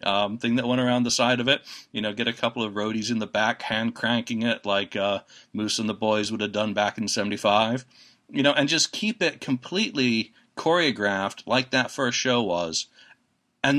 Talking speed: 210 wpm